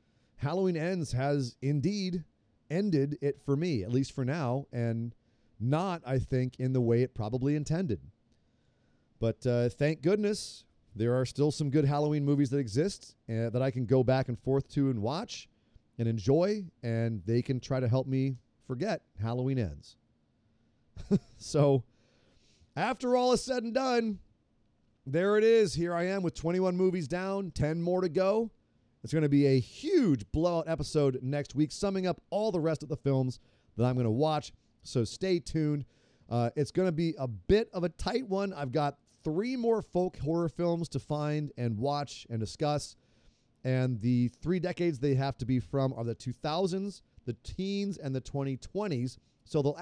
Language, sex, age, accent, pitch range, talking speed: English, male, 30-49, American, 120-170 Hz, 180 wpm